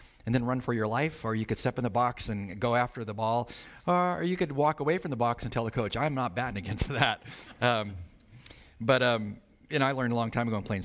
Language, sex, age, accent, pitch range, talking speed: English, male, 40-59, American, 100-130 Hz, 260 wpm